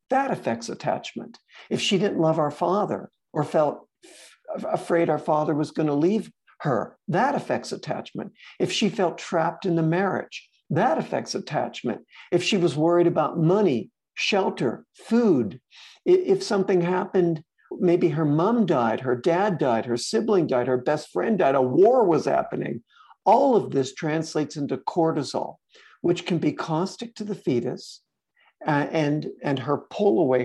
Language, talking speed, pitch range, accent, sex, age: English, 155 wpm, 135-180 Hz, American, male, 60-79